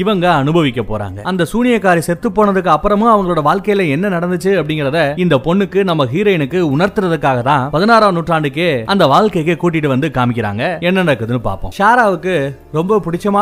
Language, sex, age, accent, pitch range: Tamil, male, 30-49, native, 140-190 Hz